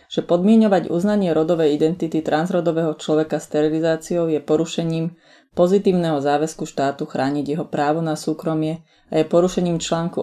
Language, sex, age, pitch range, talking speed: Slovak, female, 30-49, 150-175 Hz, 135 wpm